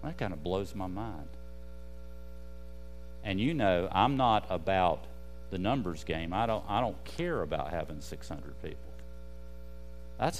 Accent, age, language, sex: American, 50-69, English, male